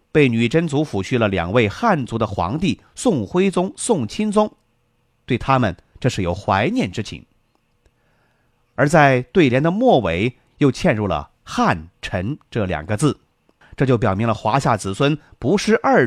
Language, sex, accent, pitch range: Chinese, male, native, 110-155 Hz